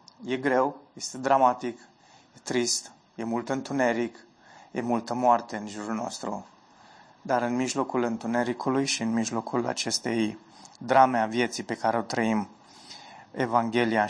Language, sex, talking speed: Romanian, male, 130 wpm